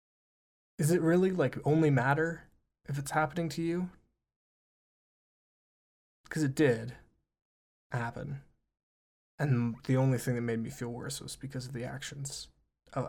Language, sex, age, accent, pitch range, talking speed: English, male, 20-39, American, 115-140 Hz, 140 wpm